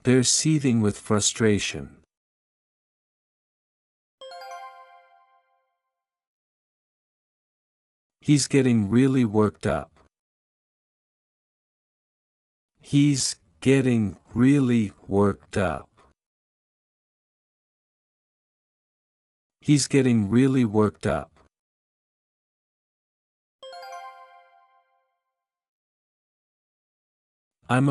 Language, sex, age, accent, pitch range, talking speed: English, male, 50-69, American, 85-125 Hz, 45 wpm